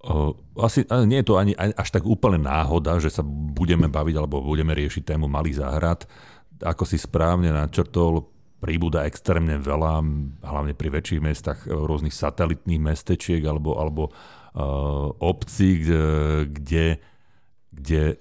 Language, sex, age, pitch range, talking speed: Slovak, male, 40-59, 75-85 Hz, 135 wpm